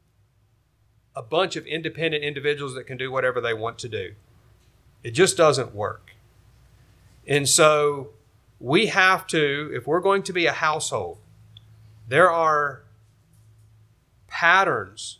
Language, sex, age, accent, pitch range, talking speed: English, male, 40-59, American, 110-150 Hz, 125 wpm